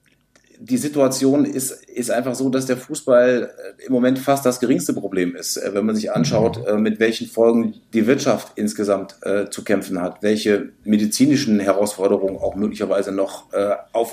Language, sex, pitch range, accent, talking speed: German, male, 115-135 Hz, German, 155 wpm